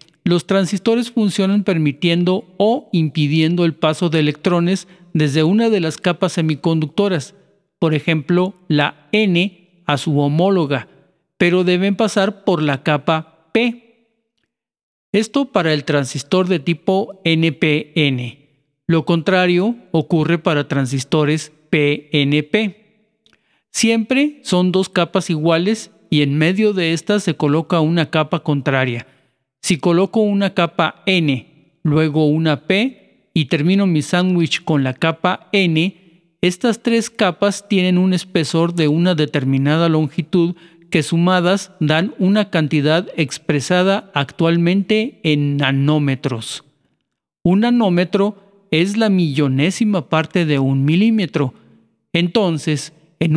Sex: male